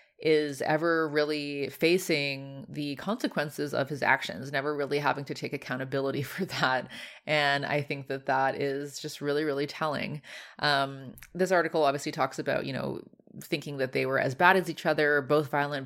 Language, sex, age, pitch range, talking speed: English, female, 20-39, 140-160 Hz, 175 wpm